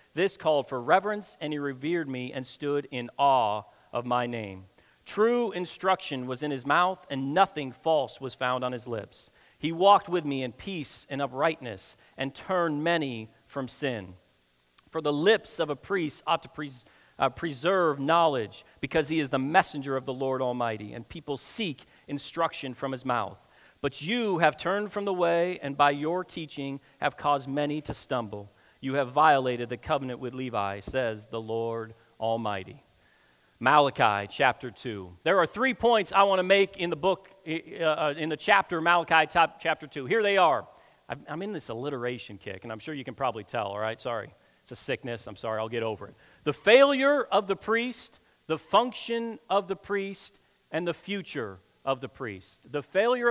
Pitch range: 125-175 Hz